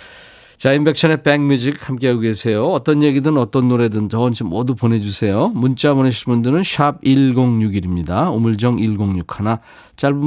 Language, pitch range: Korean, 100-145 Hz